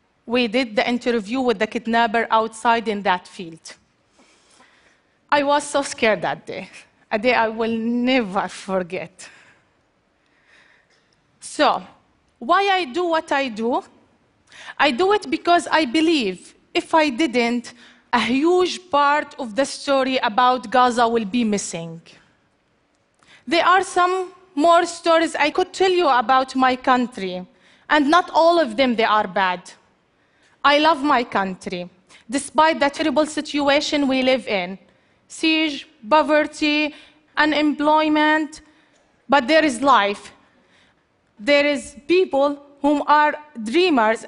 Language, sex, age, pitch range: Chinese, female, 30-49, 235-315 Hz